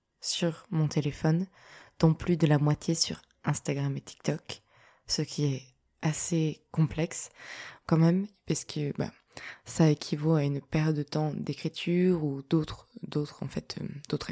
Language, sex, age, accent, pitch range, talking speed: French, female, 20-39, French, 150-175 Hz, 150 wpm